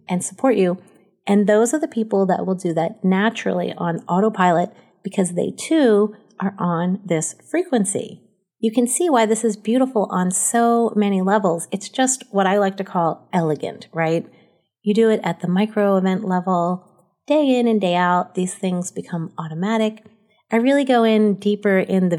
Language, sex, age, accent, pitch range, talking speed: English, female, 30-49, American, 180-220 Hz, 180 wpm